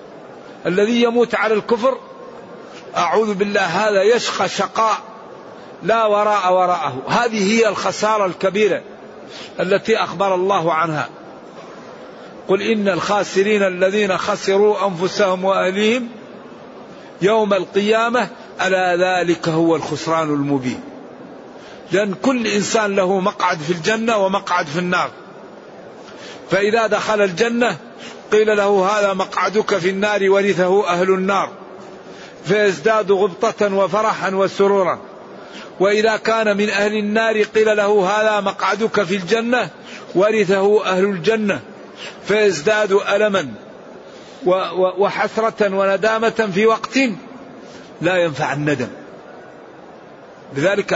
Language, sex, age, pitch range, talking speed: Arabic, male, 50-69, 185-215 Hz, 100 wpm